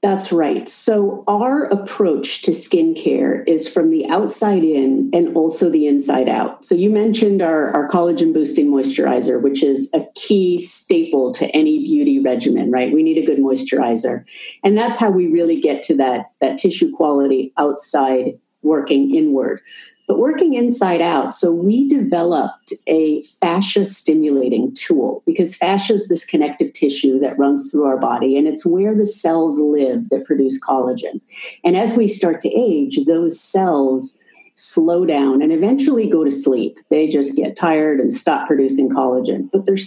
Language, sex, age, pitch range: English, female, 50-69, 145-215 Hz